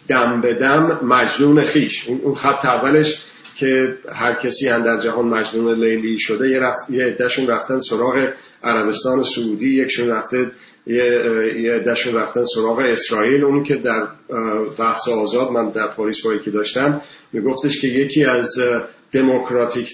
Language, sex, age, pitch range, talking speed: English, male, 40-59, 115-140 Hz, 145 wpm